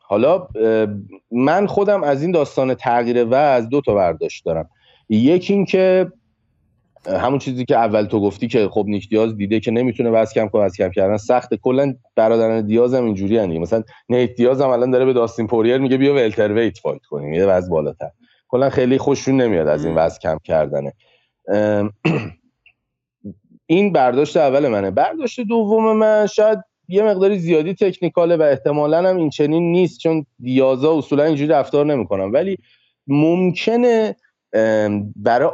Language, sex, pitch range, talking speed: Persian, male, 110-155 Hz, 150 wpm